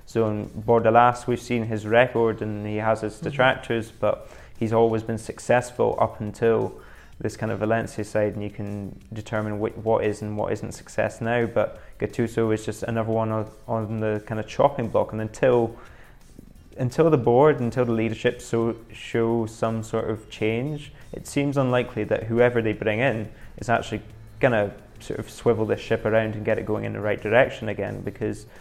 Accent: British